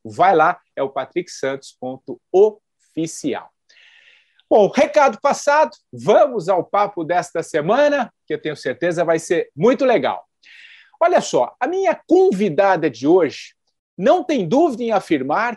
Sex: male